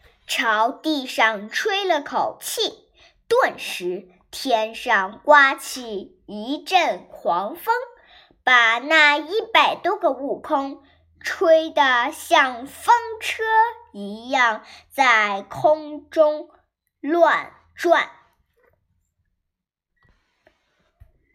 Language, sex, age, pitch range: Chinese, male, 10-29, 230-360 Hz